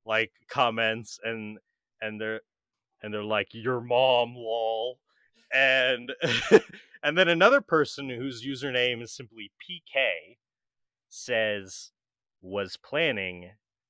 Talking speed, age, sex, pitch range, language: 105 wpm, 30-49, male, 105-160 Hz, English